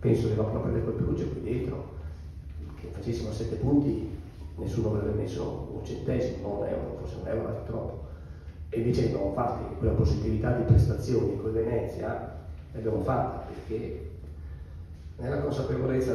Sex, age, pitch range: male, 40-59, 80-115 Hz